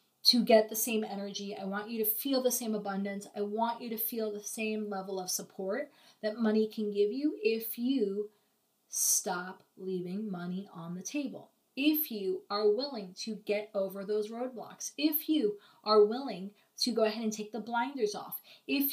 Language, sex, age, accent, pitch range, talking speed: English, female, 30-49, American, 205-245 Hz, 185 wpm